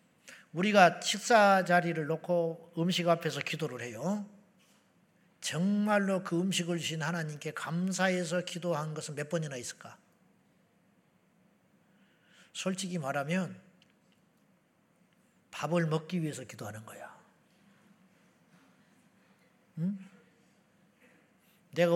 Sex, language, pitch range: male, Korean, 160-195 Hz